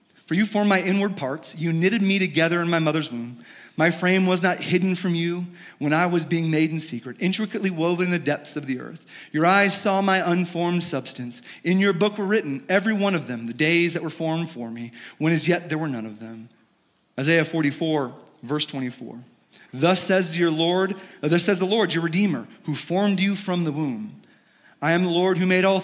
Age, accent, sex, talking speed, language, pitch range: 30-49, American, male, 210 wpm, English, 150-190 Hz